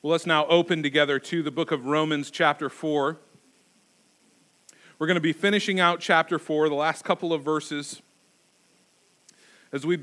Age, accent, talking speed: 40-59, American, 160 wpm